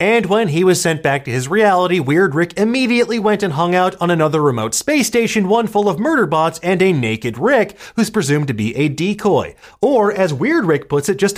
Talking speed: 225 wpm